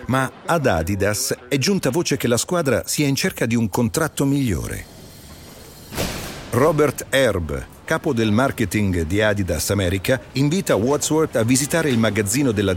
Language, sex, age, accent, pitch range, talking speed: Italian, male, 50-69, native, 100-150 Hz, 145 wpm